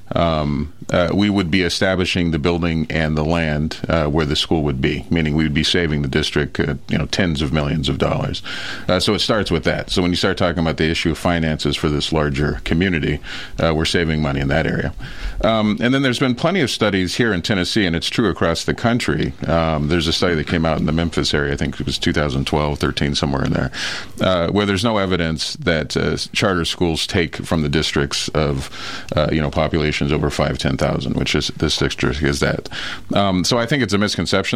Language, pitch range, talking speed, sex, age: English, 75-95 Hz, 225 wpm, male, 40-59